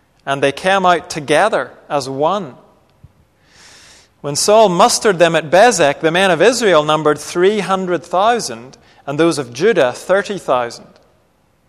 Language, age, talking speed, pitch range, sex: English, 40-59, 125 wpm, 140-185 Hz, male